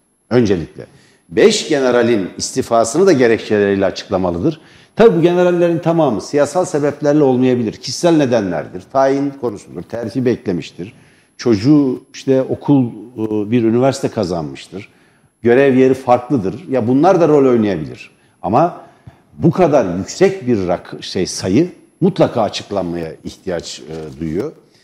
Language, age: Turkish, 60-79